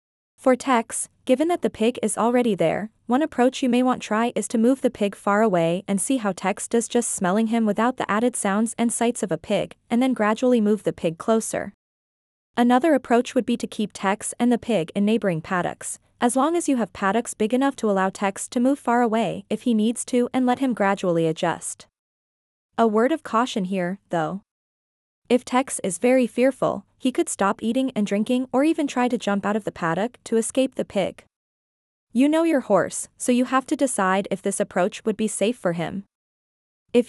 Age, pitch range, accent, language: 20-39, 200-250 Hz, American, English